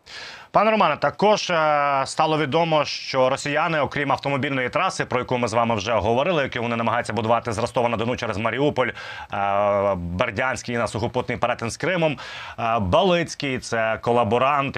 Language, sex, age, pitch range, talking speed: Ukrainian, male, 30-49, 110-145 Hz, 155 wpm